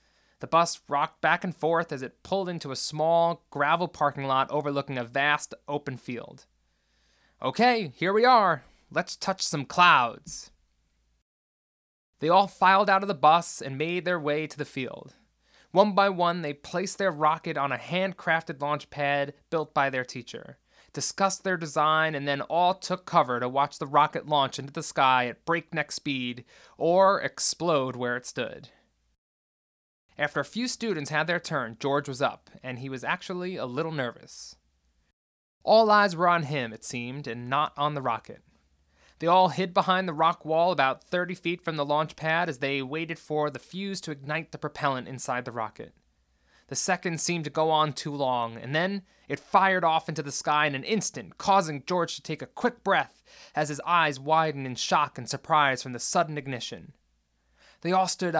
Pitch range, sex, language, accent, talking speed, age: 130-175 Hz, male, English, American, 185 wpm, 20-39